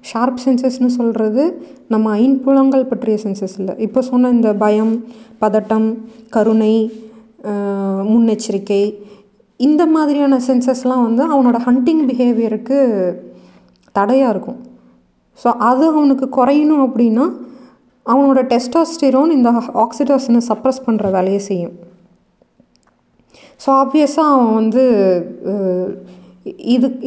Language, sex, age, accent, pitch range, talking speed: Tamil, female, 20-39, native, 200-260 Hz, 95 wpm